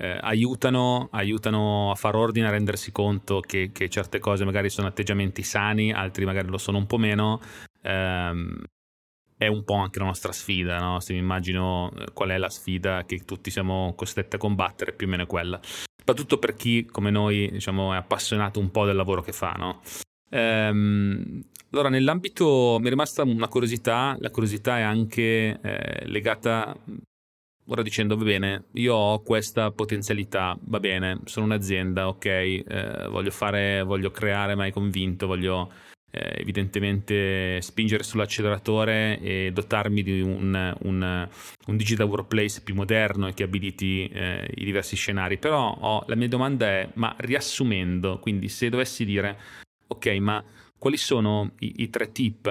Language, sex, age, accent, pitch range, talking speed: Italian, male, 30-49, native, 95-110 Hz, 165 wpm